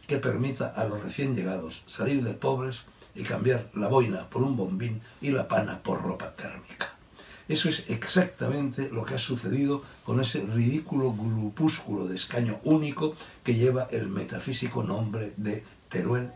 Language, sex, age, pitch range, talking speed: Spanish, male, 60-79, 110-145 Hz, 160 wpm